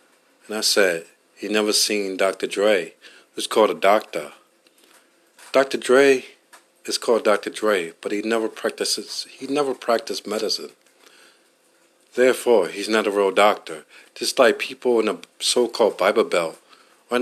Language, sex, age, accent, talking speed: English, male, 50-69, American, 145 wpm